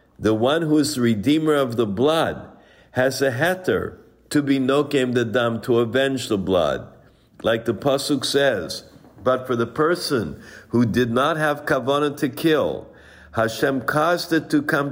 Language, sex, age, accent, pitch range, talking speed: English, male, 60-79, American, 120-145 Hz, 165 wpm